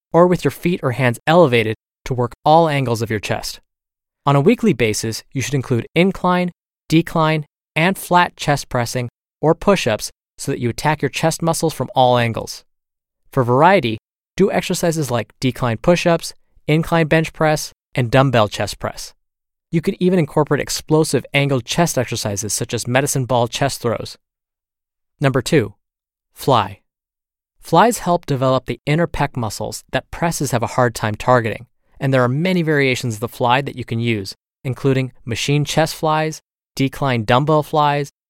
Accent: American